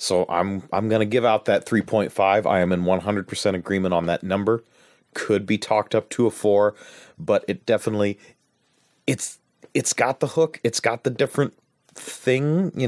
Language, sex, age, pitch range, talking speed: English, male, 30-49, 95-115 Hz, 175 wpm